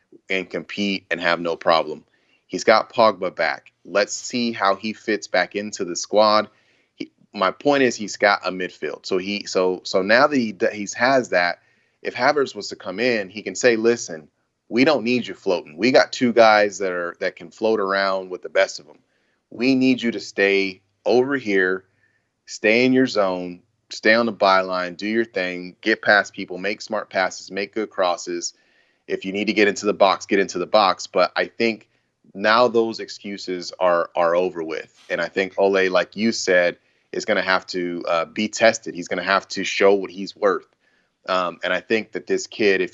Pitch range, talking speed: 90-110 Hz, 205 wpm